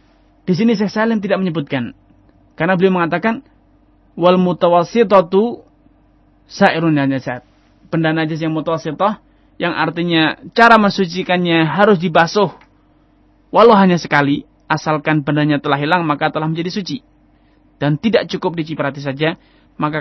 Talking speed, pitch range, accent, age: 120 wpm, 150-185 Hz, native, 20-39